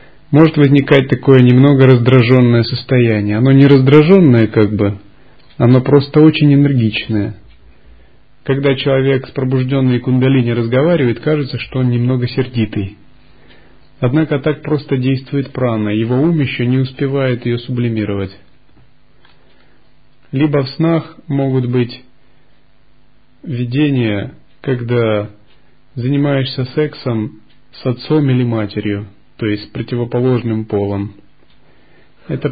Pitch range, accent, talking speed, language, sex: 115-140 Hz, native, 105 wpm, Russian, male